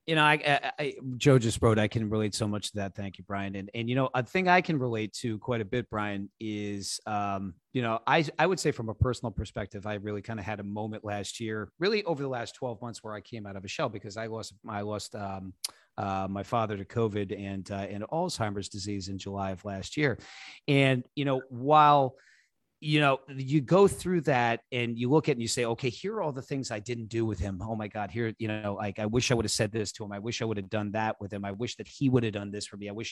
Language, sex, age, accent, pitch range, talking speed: English, male, 40-59, American, 105-140 Hz, 275 wpm